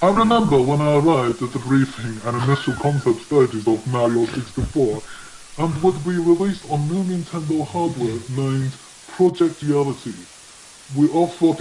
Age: 20-39